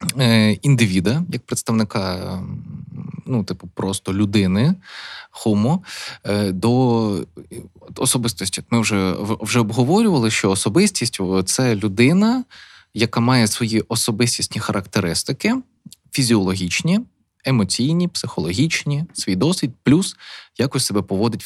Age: 20-39